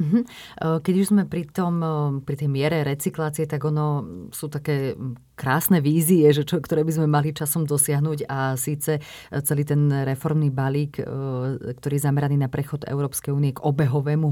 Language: Slovak